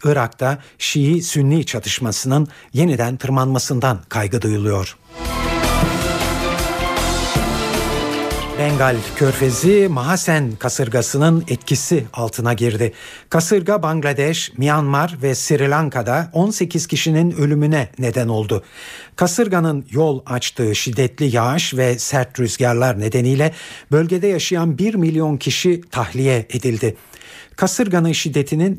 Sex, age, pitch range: male, 60-79, 120-155 Hz